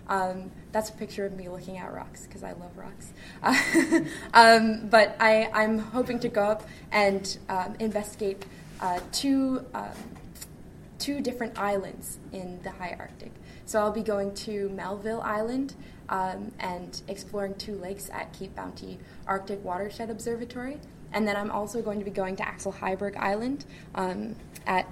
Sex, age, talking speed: female, 20-39, 160 wpm